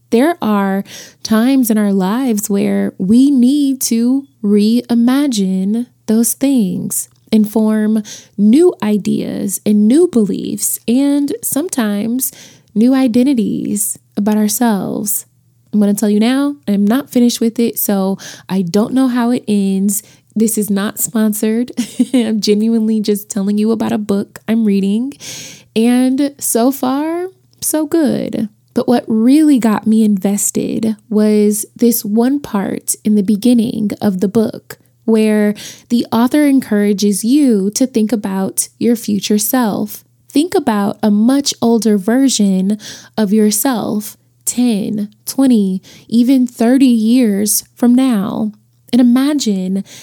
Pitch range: 210-245 Hz